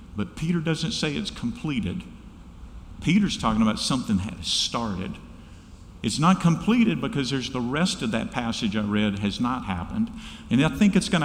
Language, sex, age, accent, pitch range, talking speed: English, male, 50-69, American, 105-175 Hz, 170 wpm